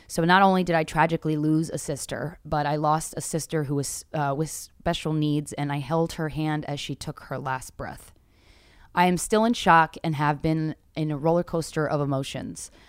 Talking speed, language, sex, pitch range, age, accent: 210 wpm, English, female, 140-165 Hz, 20-39, American